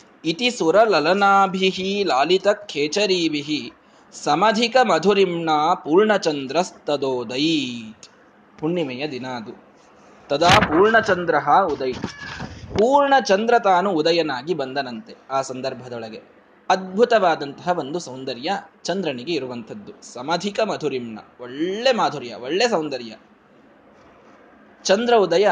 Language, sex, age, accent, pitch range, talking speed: Kannada, male, 20-39, native, 160-230 Hz, 80 wpm